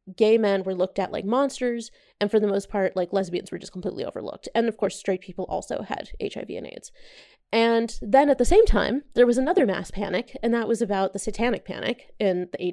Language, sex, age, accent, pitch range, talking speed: English, female, 20-39, American, 195-240 Hz, 225 wpm